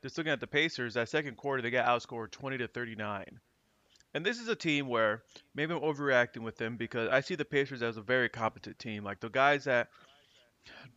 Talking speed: 215 wpm